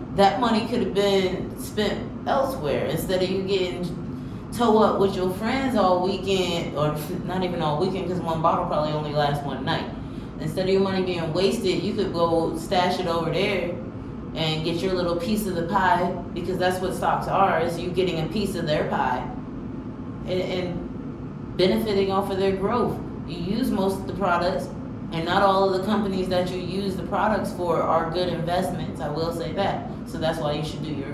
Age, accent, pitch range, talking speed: 20-39, American, 160-195 Hz, 200 wpm